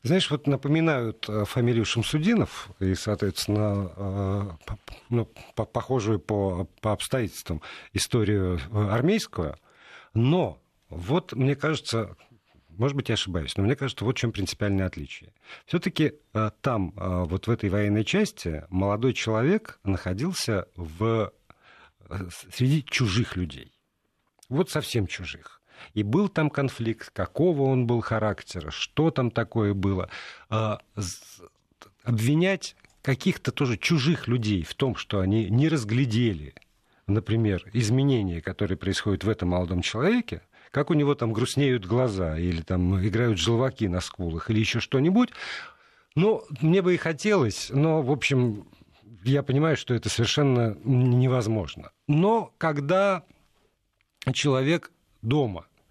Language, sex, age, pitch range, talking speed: Russian, male, 50-69, 100-140 Hz, 120 wpm